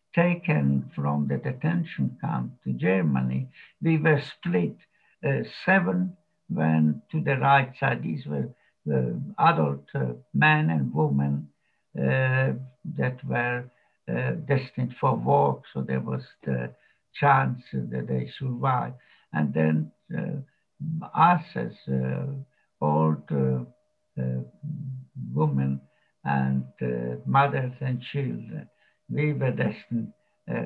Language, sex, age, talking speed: English, male, 60-79, 115 wpm